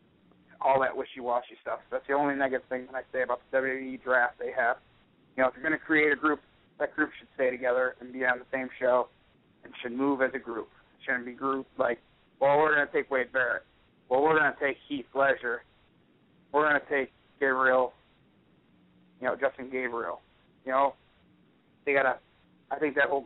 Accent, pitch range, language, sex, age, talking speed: American, 125-145 Hz, English, male, 30-49, 210 wpm